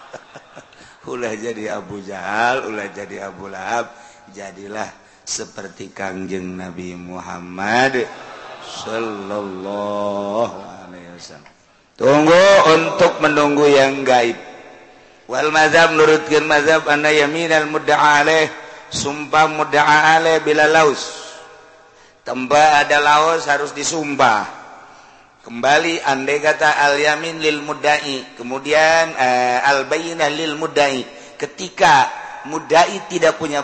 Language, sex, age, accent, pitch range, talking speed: Indonesian, male, 50-69, native, 120-155 Hz, 95 wpm